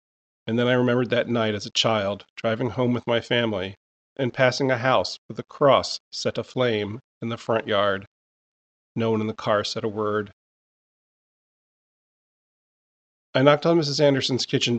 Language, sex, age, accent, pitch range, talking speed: English, male, 40-59, American, 105-140 Hz, 165 wpm